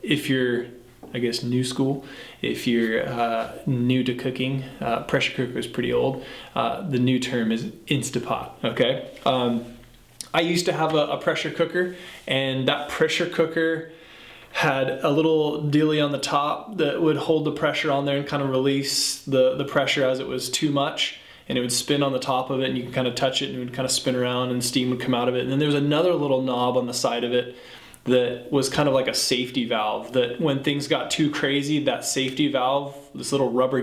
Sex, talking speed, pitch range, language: male, 225 wpm, 125-150 Hz, English